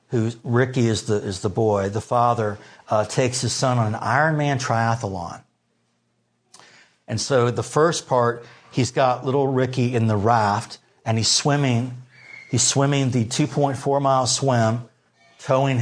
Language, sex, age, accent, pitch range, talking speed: English, male, 50-69, American, 105-130 Hz, 150 wpm